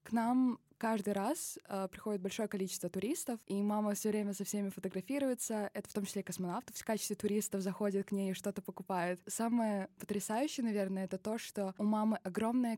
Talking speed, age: 185 wpm, 20-39